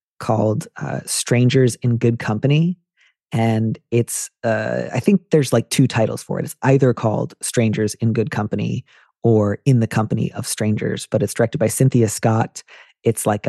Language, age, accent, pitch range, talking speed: English, 30-49, American, 110-130 Hz, 170 wpm